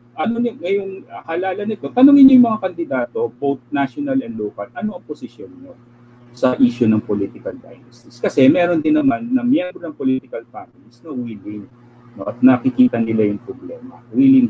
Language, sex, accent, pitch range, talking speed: English, male, Filipino, 120-155 Hz, 170 wpm